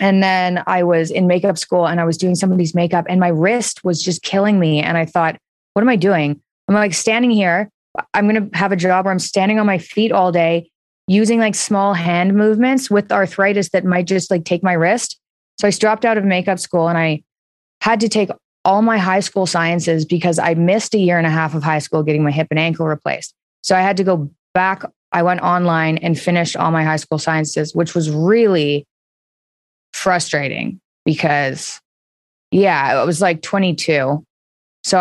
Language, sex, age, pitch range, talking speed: English, female, 20-39, 150-190 Hz, 210 wpm